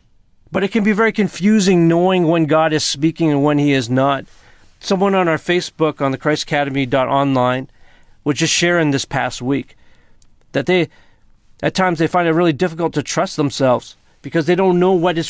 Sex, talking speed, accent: male, 190 wpm, American